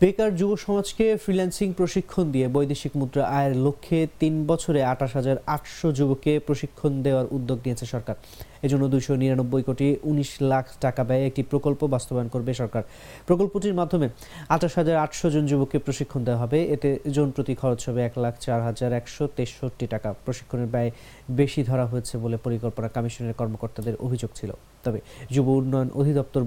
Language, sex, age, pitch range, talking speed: English, male, 30-49, 125-150 Hz, 125 wpm